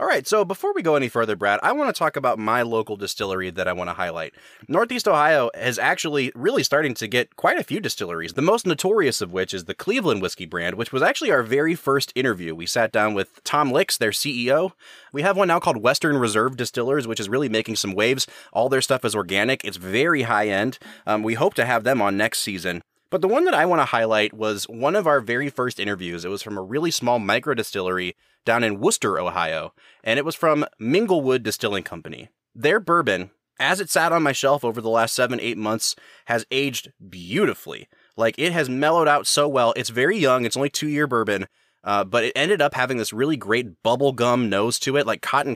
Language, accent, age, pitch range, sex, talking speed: English, American, 20-39, 105-145 Hz, male, 230 wpm